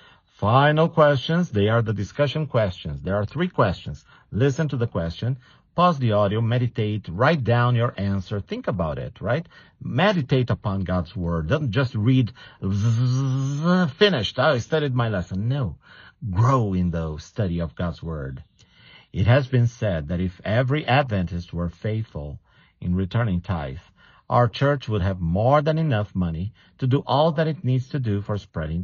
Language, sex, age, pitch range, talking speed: English, male, 50-69, 95-125 Hz, 160 wpm